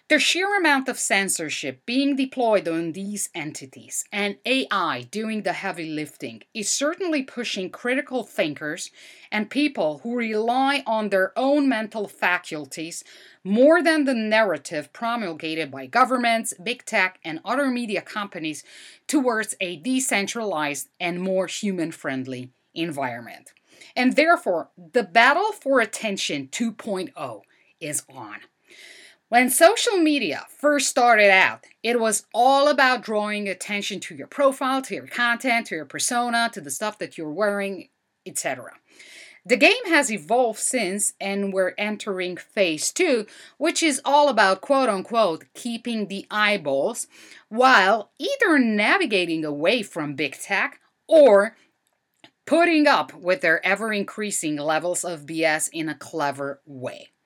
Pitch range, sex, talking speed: 175-260 Hz, female, 130 wpm